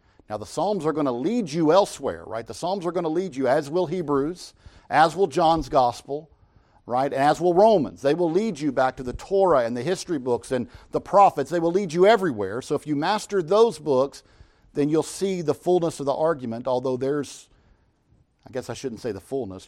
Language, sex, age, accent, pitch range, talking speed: English, male, 50-69, American, 115-155 Hz, 220 wpm